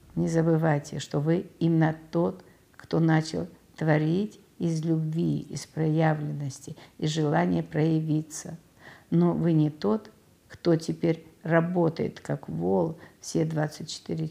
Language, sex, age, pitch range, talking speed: Russian, female, 50-69, 100-165 Hz, 115 wpm